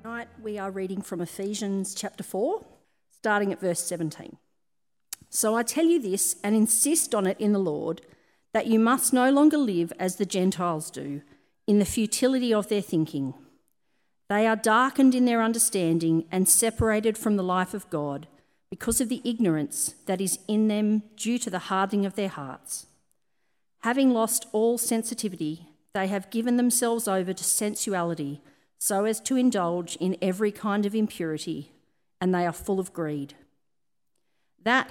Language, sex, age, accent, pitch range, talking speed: English, female, 40-59, Australian, 170-220 Hz, 165 wpm